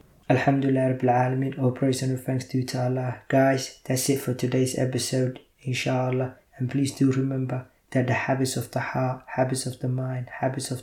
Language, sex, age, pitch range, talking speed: English, male, 20-39, 125-135 Hz, 185 wpm